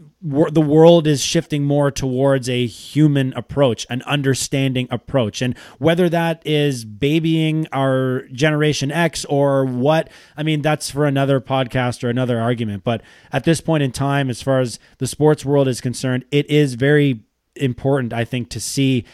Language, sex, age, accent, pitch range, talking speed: English, male, 20-39, American, 120-150 Hz, 165 wpm